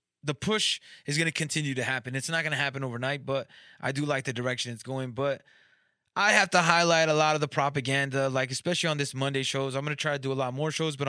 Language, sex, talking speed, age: English, male, 265 wpm, 20-39